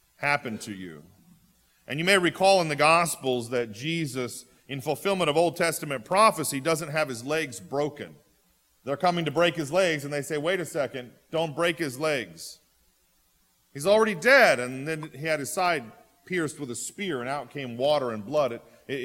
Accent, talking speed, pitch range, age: American, 190 wpm, 110-165 Hz, 40-59